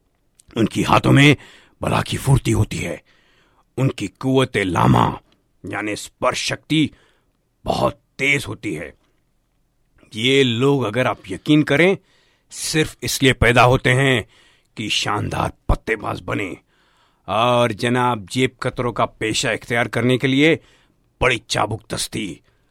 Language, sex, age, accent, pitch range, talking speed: Hindi, male, 50-69, native, 120-140 Hz, 120 wpm